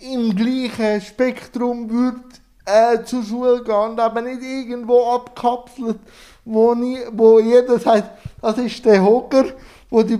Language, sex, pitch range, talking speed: German, male, 215-245 Hz, 130 wpm